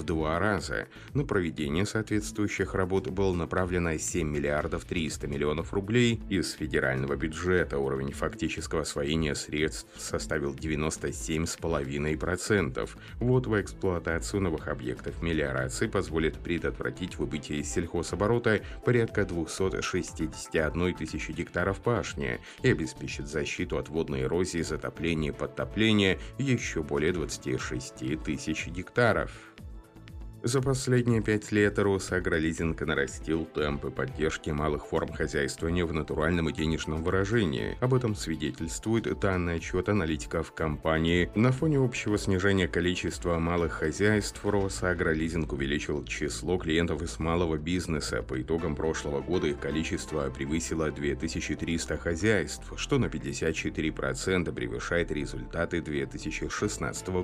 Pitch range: 75-100 Hz